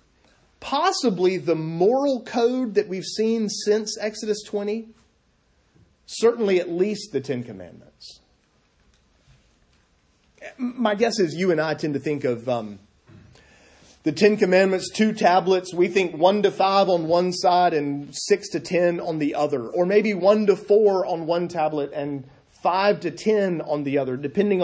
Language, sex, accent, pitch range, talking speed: English, male, American, 150-210 Hz, 155 wpm